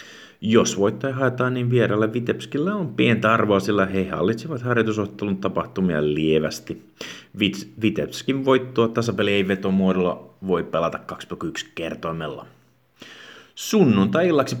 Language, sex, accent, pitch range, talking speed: Finnish, male, native, 90-115 Hz, 105 wpm